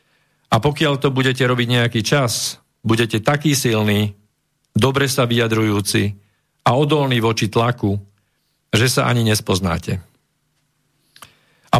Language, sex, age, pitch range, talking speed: Slovak, male, 50-69, 115-145 Hz, 110 wpm